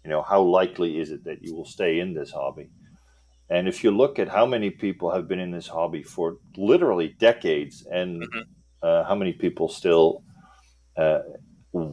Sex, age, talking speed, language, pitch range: male, 40-59, 180 wpm, English, 75-90 Hz